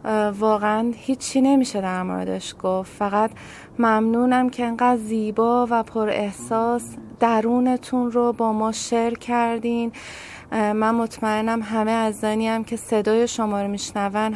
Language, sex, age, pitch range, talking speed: Persian, female, 30-49, 205-235 Hz, 125 wpm